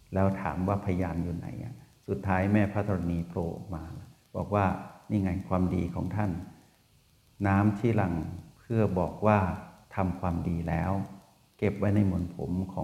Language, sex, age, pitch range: Thai, male, 60-79, 90-115 Hz